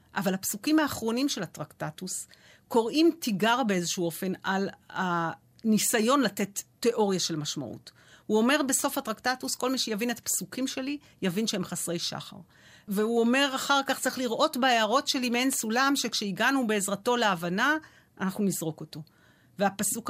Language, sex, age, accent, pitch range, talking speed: Hebrew, female, 40-59, native, 195-260 Hz, 135 wpm